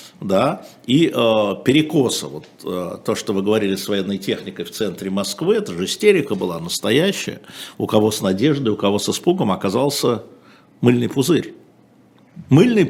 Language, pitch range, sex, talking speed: Russian, 95-125 Hz, male, 155 wpm